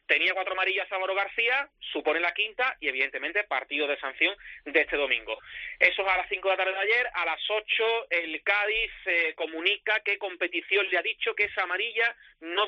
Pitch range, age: 160-215 Hz, 30-49